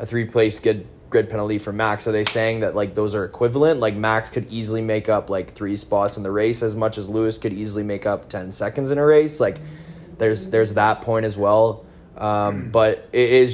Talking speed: 230 wpm